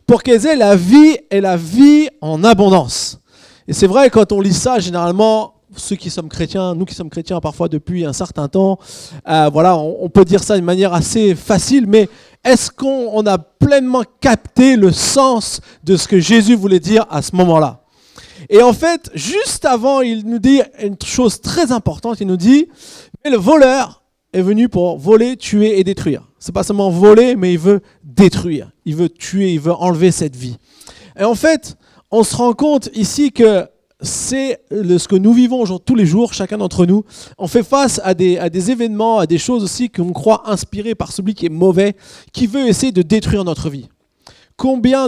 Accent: French